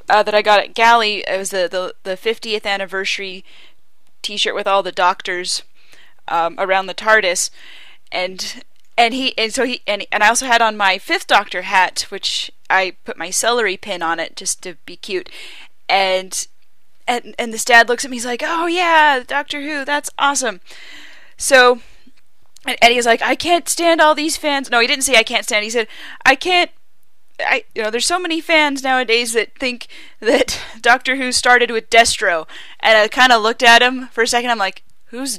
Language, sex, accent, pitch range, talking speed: English, female, American, 195-255 Hz, 200 wpm